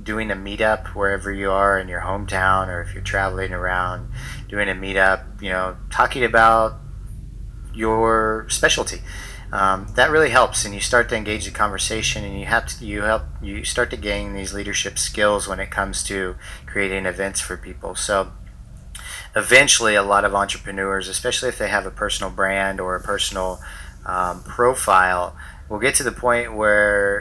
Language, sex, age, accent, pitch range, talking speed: English, male, 30-49, American, 95-110 Hz, 175 wpm